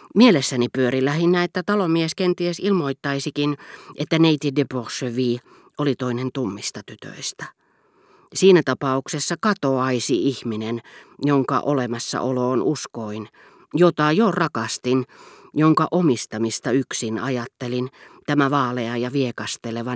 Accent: native